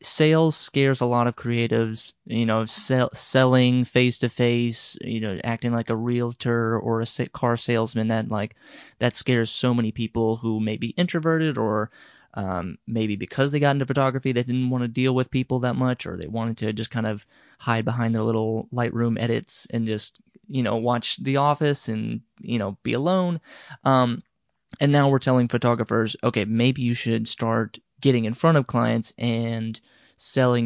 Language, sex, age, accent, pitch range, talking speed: English, male, 20-39, American, 115-130 Hz, 180 wpm